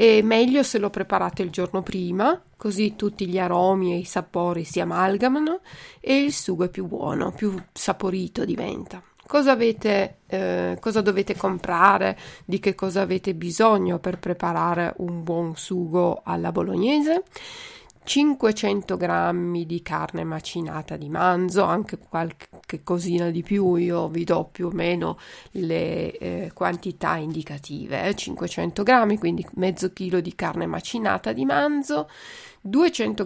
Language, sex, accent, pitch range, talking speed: Italian, female, native, 175-220 Hz, 140 wpm